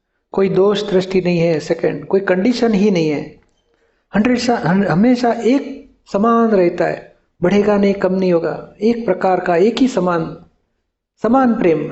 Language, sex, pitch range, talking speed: Gujarati, male, 170-215 Hz, 150 wpm